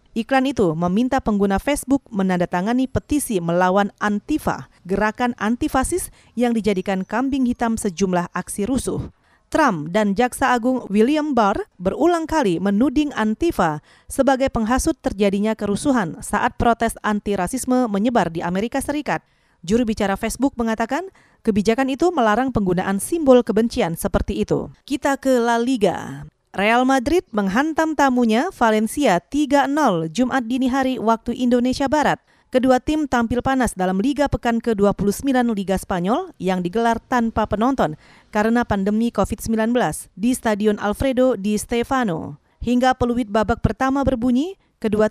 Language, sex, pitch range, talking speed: Indonesian, female, 200-265 Hz, 125 wpm